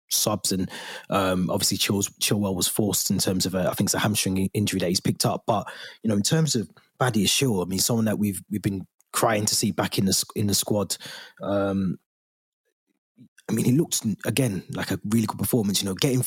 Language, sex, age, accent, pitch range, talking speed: English, male, 20-39, British, 95-110 Hz, 220 wpm